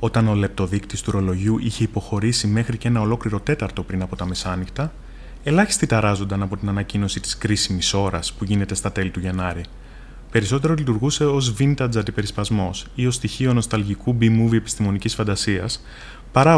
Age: 20-39